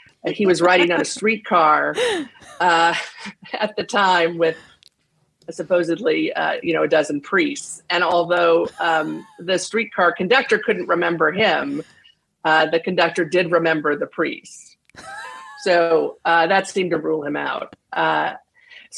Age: 40-59